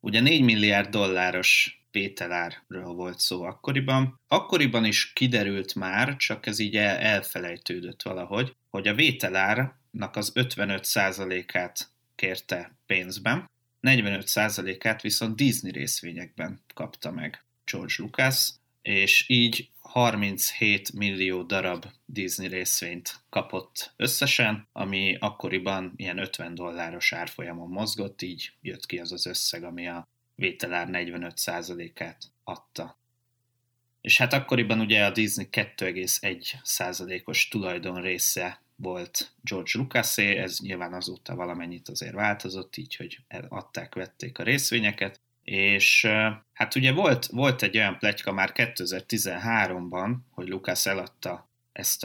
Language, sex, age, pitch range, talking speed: Hungarian, male, 30-49, 95-120 Hz, 110 wpm